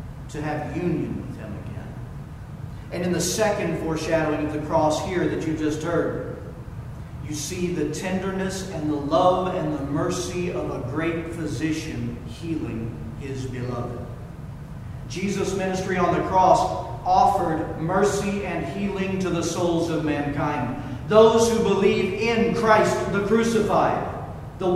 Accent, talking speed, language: American, 140 wpm, English